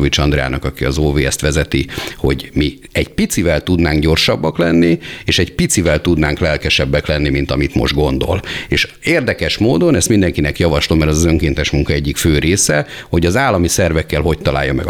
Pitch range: 75-100 Hz